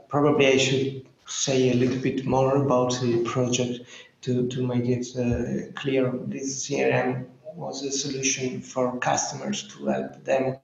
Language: English